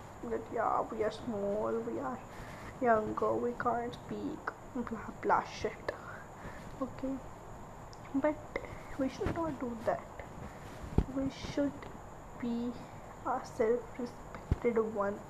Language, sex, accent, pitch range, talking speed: Hindi, female, native, 230-255 Hz, 105 wpm